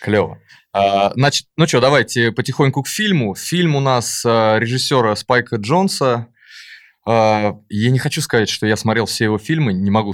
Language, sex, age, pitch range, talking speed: Russian, male, 20-39, 100-130 Hz, 170 wpm